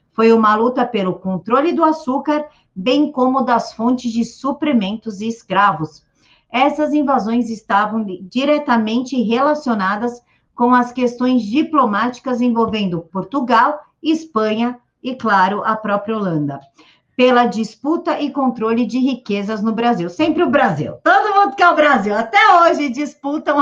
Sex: female